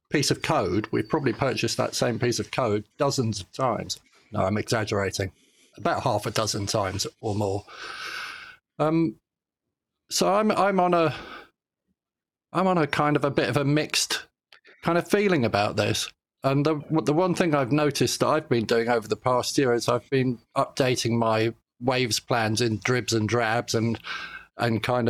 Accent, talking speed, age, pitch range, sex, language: British, 180 wpm, 40-59, 110-140 Hz, male, English